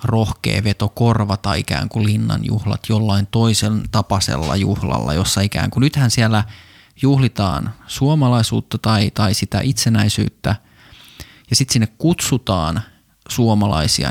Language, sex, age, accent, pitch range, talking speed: Finnish, male, 20-39, native, 100-125 Hz, 110 wpm